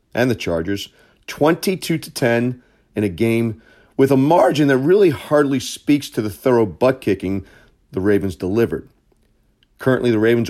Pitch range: 100-130 Hz